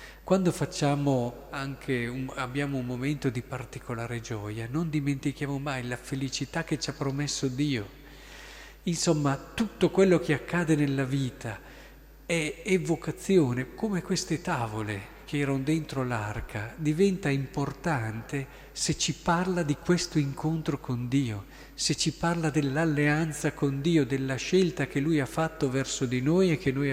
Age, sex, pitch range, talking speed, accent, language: 50-69, male, 125-150 Hz, 145 wpm, native, Italian